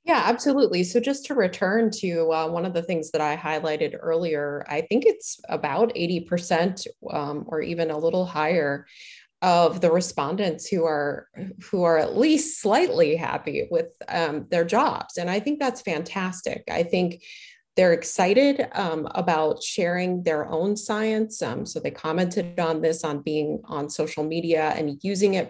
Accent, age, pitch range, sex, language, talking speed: American, 30-49, 160-210 Hz, female, English, 165 wpm